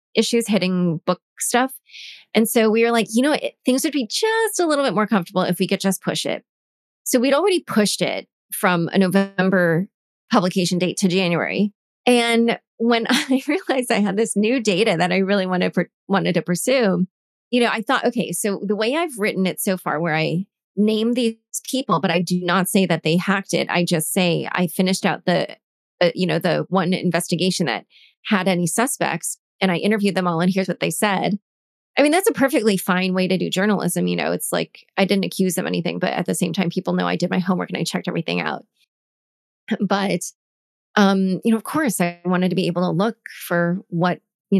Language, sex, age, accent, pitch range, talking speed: English, female, 20-39, American, 180-225 Hz, 215 wpm